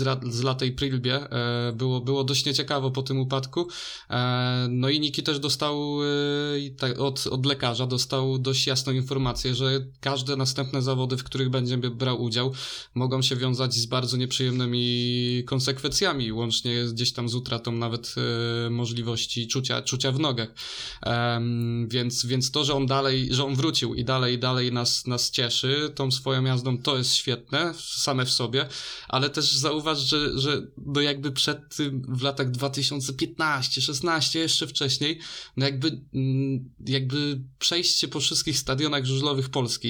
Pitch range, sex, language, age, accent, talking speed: 125-145 Hz, male, Polish, 20-39, native, 145 wpm